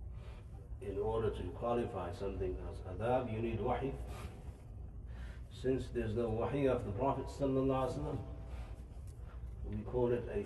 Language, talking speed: English, 120 wpm